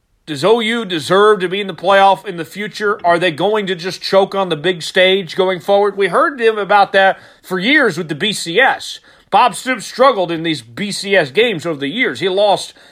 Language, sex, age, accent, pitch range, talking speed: English, male, 40-59, American, 160-205 Hz, 210 wpm